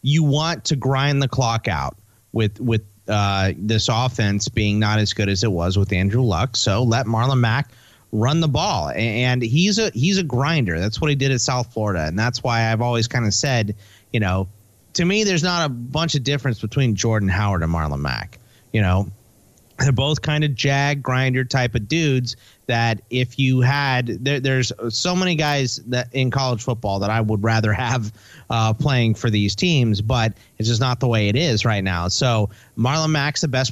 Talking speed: 205 wpm